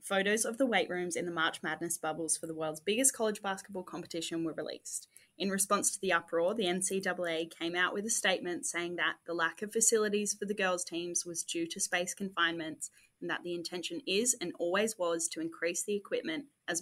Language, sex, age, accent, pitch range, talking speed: English, female, 20-39, Australian, 165-200 Hz, 210 wpm